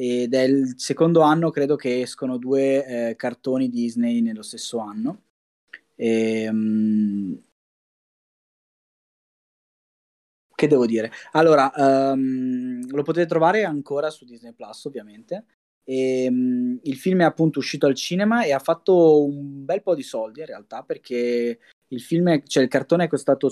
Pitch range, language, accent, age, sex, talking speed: 120-150 Hz, Italian, native, 20-39, male, 150 wpm